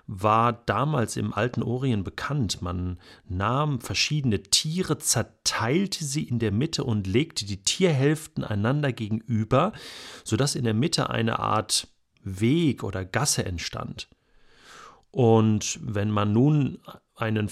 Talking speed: 125 wpm